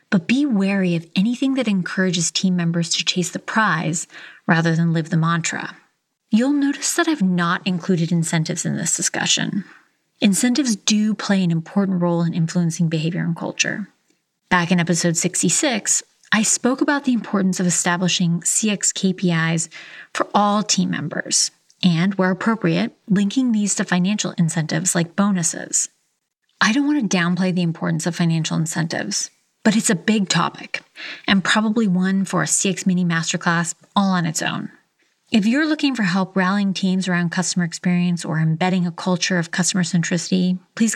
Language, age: English, 30-49